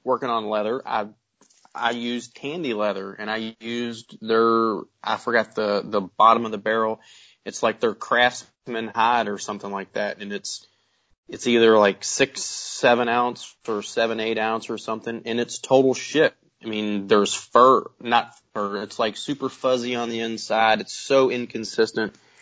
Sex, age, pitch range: male, 20-39, 105-120 Hz